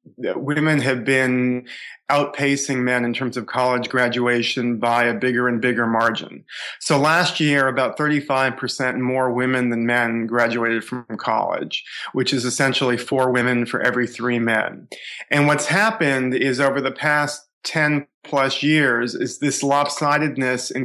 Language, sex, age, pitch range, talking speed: English, male, 30-49, 125-140 Hz, 145 wpm